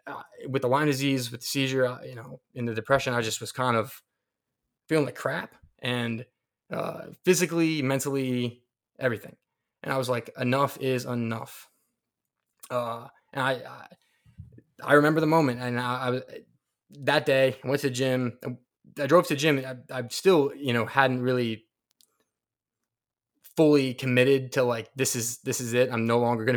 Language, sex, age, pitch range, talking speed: English, male, 20-39, 120-140 Hz, 180 wpm